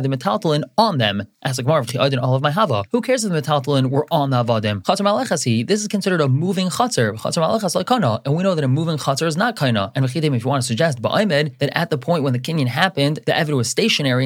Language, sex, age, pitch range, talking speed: English, male, 20-39, 125-160 Hz, 260 wpm